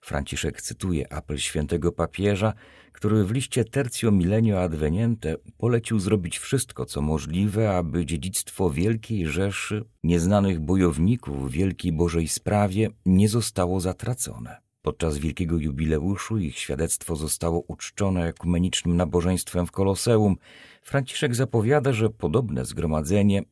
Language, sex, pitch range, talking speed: Polish, male, 85-110 Hz, 115 wpm